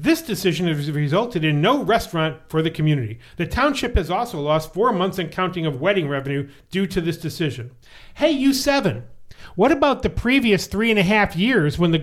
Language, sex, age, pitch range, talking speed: English, male, 40-59, 155-215 Hz, 195 wpm